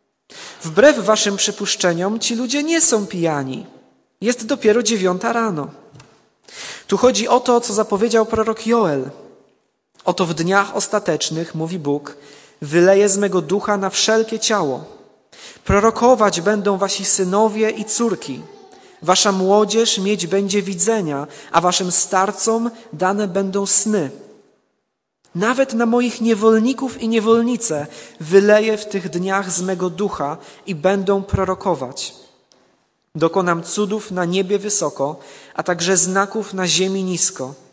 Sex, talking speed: male, 120 wpm